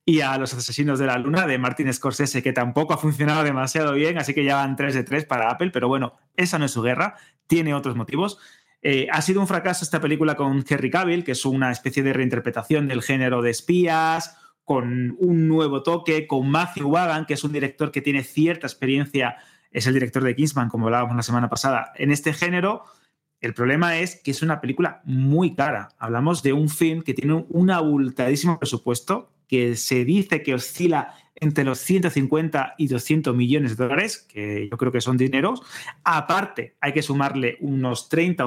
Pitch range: 130-160 Hz